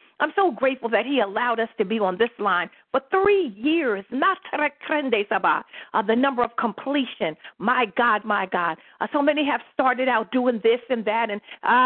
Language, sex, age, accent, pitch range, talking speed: English, female, 50-69, American, 240-340 Hz, 185 wpm